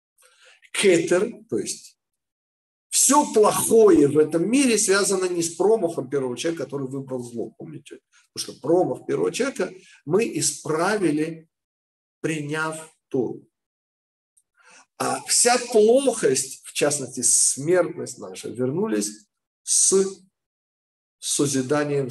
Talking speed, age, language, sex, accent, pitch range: 100 wpm, 50-69, Russian, male, native, 125-180 Hz